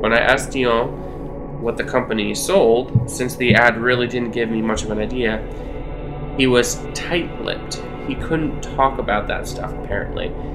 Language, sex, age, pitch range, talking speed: English, male, 20-39, 110-130 Hz, 165 wpm